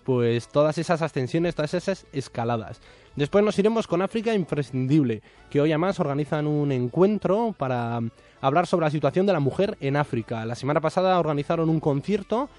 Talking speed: 165 wpm